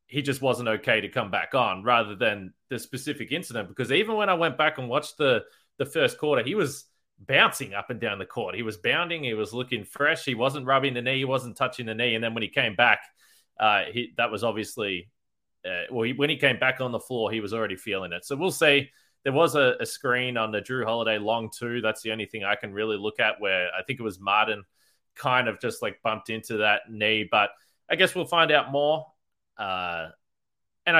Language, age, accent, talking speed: English, 20-39, Australian, 235 wpm